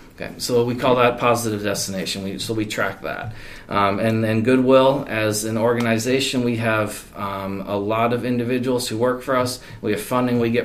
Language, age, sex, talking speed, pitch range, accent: English, 30-49, male, 185 wpm, 100-120 Hz, American